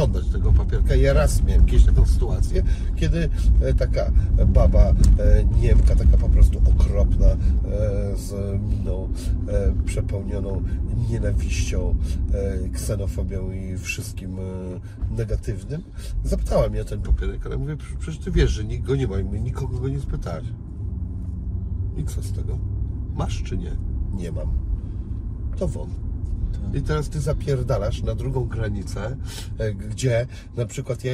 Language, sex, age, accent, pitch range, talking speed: Polish, male, 40-59, native, 90-115 Hz, 125 wpm